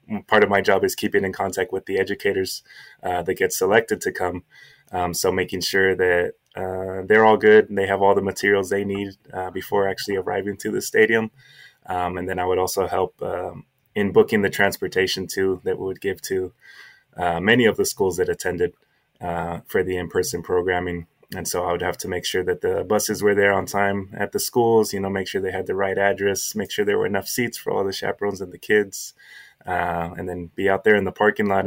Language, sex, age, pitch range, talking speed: English, male, 20-39, 95-110 Hz, 230 wpm